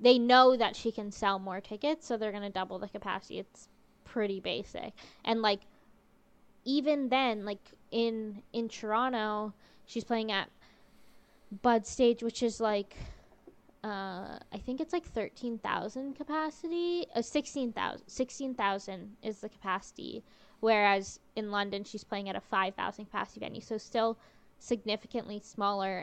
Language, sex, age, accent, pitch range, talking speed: English, female, 10-29, American, 195-230 Hz, 145 wpm